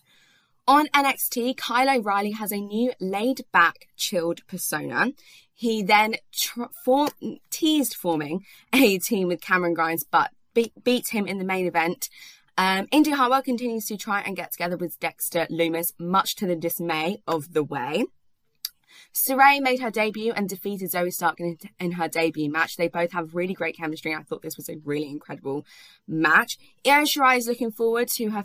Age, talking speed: 20-39, 175 wpm